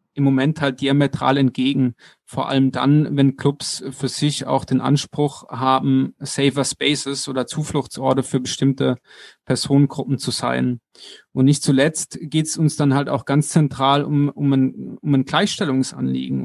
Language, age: German, 30-49